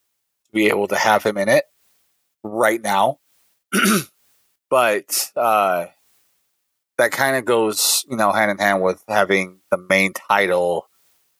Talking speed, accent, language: 130 wpm, American, English